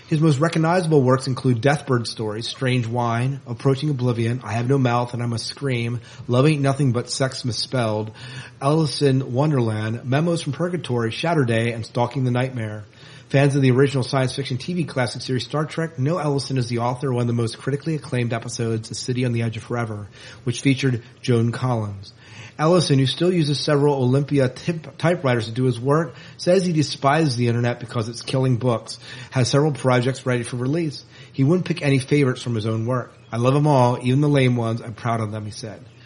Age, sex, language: 30-49, male, English